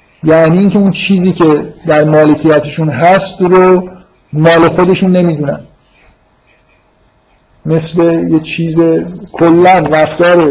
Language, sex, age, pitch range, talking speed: Persian, male, 50-69, 155-185 Hz, 95 wpm